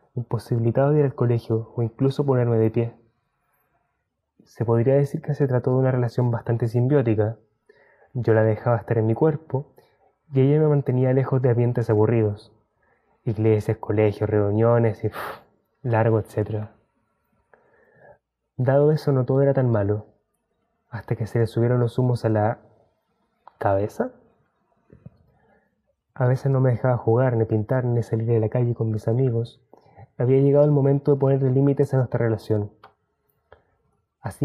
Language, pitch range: Spanish, 110-135 Hz